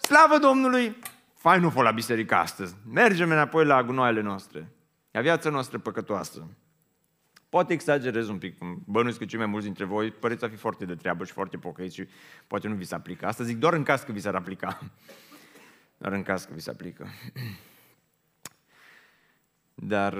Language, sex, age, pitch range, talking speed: Romanian, male, 30-49, 110-175 Hz, 175 wpm